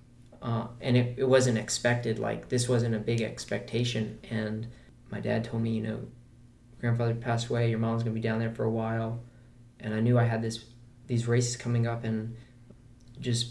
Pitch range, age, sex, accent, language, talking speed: 115-125 Hz, 20-39, male, American, English, 195 wpm